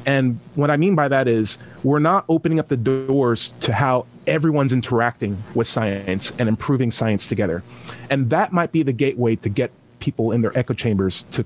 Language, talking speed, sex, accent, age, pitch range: English, 195 wpm, male, American, 30-49, 110-150 Hz